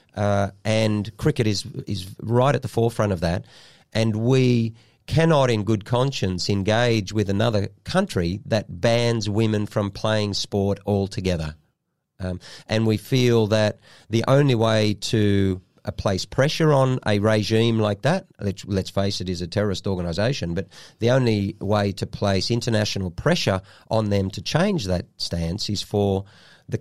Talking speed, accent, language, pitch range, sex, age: 155 wpm, Australian, English, 95-120 Hz, male, 40-59